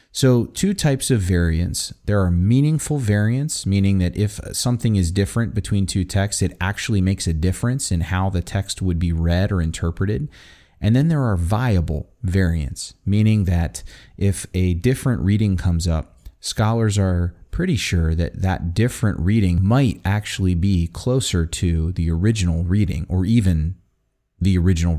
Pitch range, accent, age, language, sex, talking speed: 85-115 Hz, American, 30-49, English, male, 160 wpm